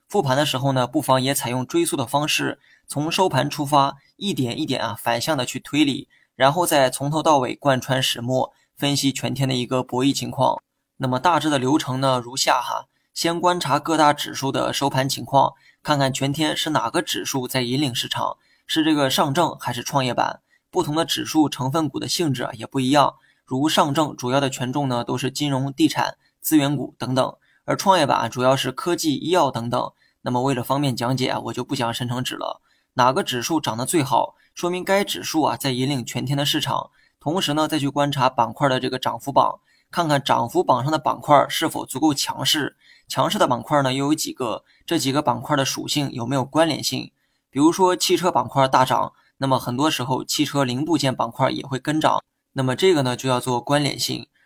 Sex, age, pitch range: male, 20-39, 130-155 Hz